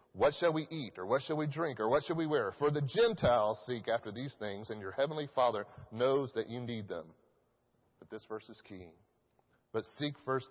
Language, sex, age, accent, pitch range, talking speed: English, male, 40-59, American, 110-140 Hz, 215 wpm